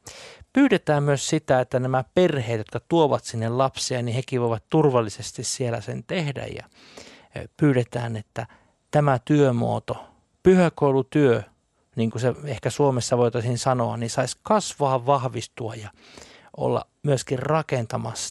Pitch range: 115-155 Hz